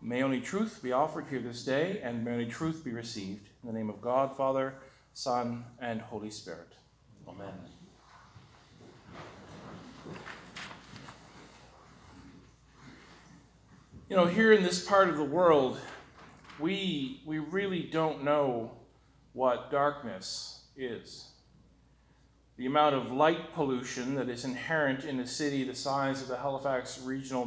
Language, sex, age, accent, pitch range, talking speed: English, male, 40-59, American, 125-160 Hz, 130 wpm